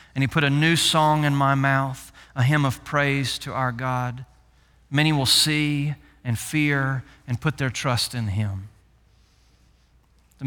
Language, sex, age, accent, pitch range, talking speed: English, male, 40-59, American, 125-160 Hz, 160 wpm